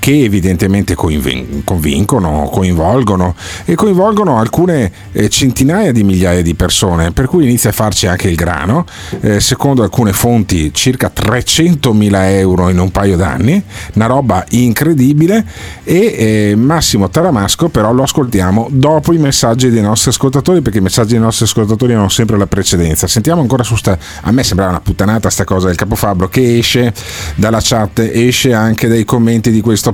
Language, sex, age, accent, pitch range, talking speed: Italian, male, 40-59, native, 95-130 Hz, 165 wpm